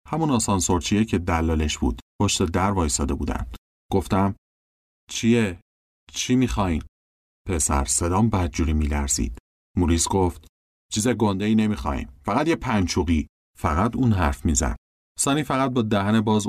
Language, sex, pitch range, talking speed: Persian, male, 75-115 Hz, 125 wpm